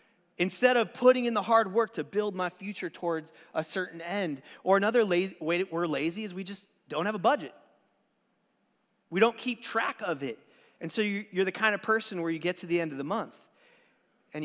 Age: 30-49